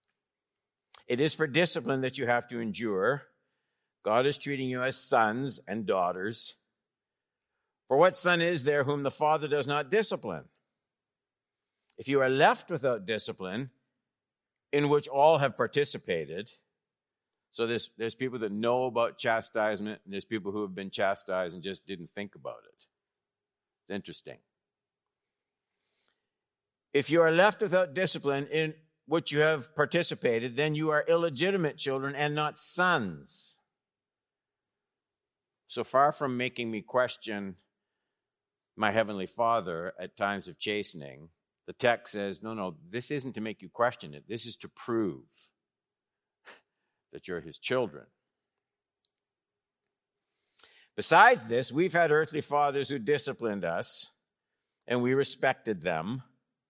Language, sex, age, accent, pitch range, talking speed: English, male, 60-79, American, 110-150 Hz, 135 wpm